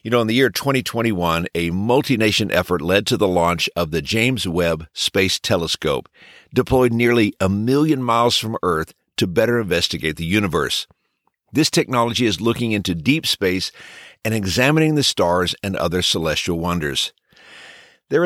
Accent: American